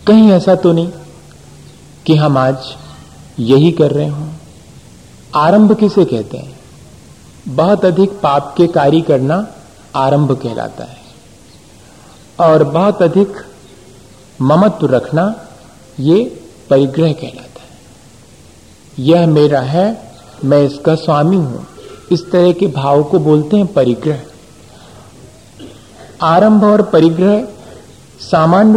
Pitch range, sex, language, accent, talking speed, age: 145-200 Hz, male, Hindi, native, 110 wpm, 40-59